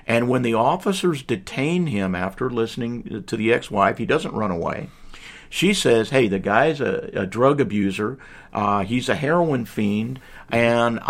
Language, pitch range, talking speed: English, 105-150 Hz, 160 wpm